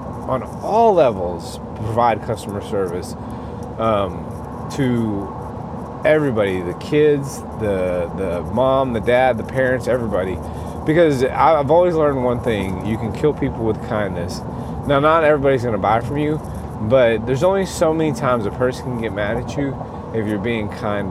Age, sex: 30-49, male